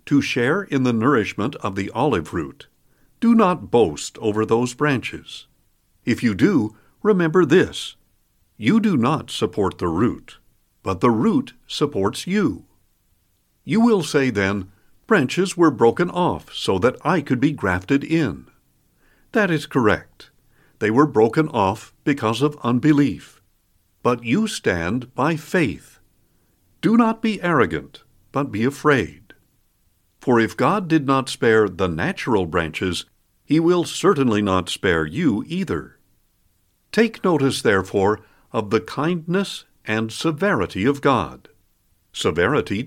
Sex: male